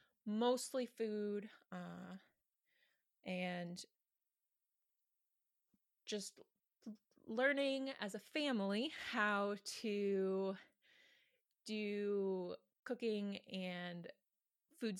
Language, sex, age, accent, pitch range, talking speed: English, female, 20-39, American, 180-210 Hz, 60 wpm